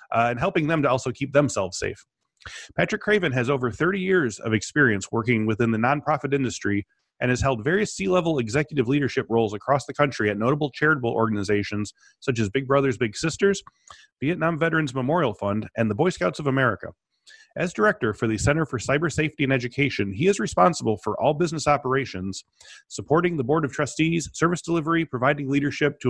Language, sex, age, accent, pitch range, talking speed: English, male, 30-49, American, 120-160 Hz, 185 wpm